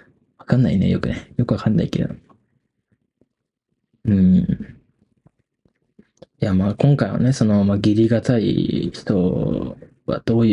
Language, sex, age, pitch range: Japanese, male, 20-39, 105-145 Hz